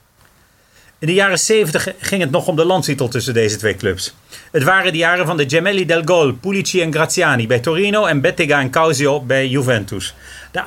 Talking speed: 195 wpm